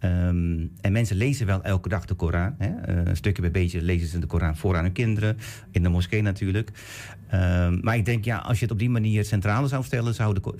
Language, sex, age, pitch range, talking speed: Dutch, male, 50-69, 95-115 Hz, 230 wpm